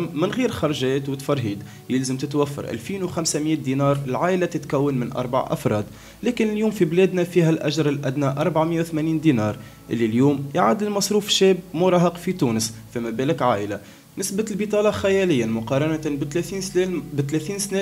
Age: 20-39